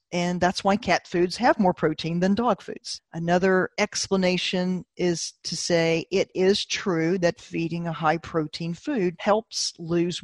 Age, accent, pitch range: 40-59, American, 170-205 Hz